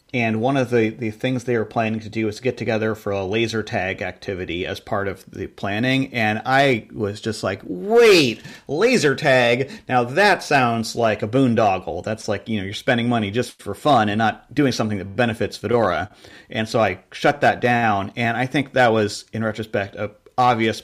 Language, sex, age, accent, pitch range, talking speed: English, male, 40-59, American, 105-130 Hz, 200 wpm